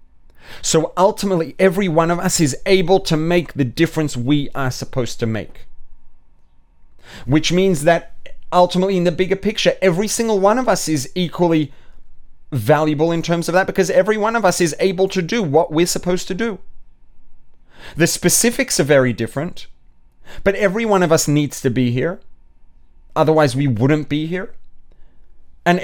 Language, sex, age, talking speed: English, male, 30-49, 165 wpm